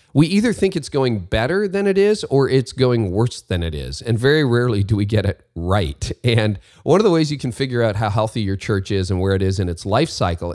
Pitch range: 95-130 Hz